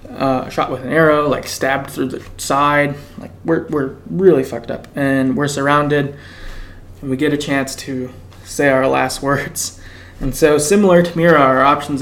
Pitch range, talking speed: 115-150 Hz, 180 wpm